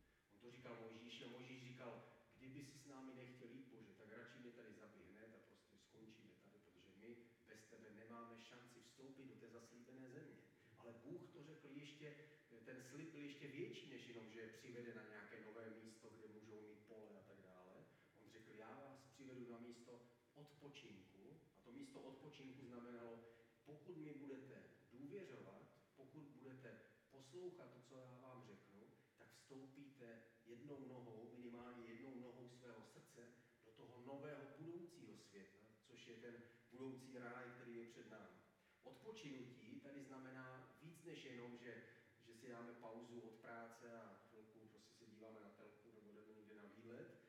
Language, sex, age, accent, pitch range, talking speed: Czech, male, 40-59, native, 115-135 Hz, 160 wpm